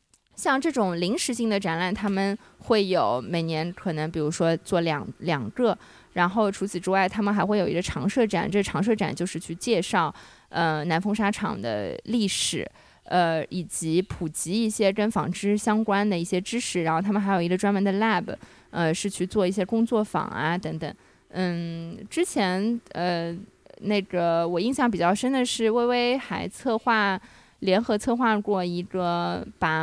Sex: female